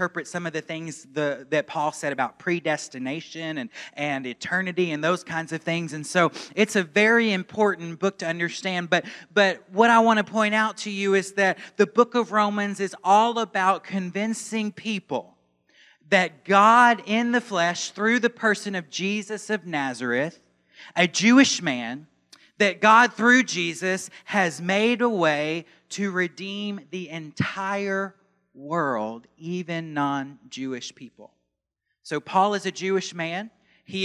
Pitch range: 165-205 Hz